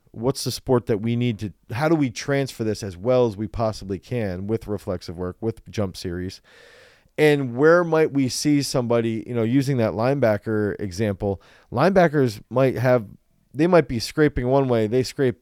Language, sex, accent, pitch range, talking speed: English, male, American, 115-145 Hz, 185 wpm